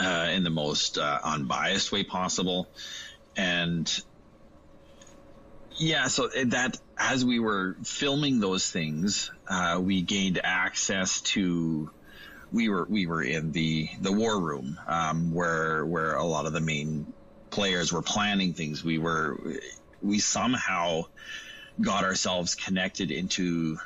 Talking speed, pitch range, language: 130 wpm, 80-95 Hz, English